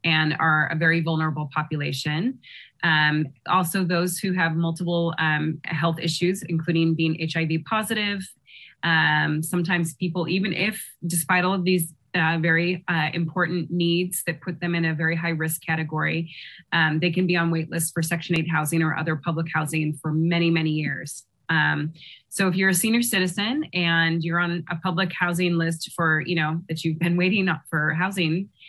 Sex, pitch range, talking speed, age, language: female, 160-180 Hz, 175 wpm, 20-39, English